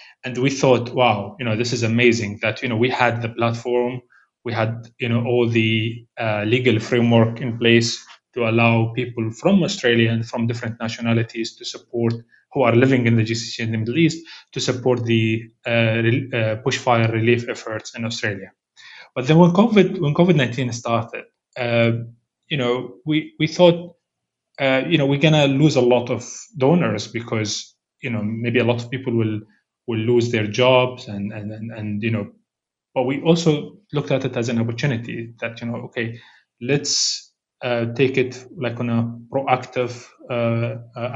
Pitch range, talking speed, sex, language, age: 115-135 Hz, 180 wpm, male, Arabic, 20-39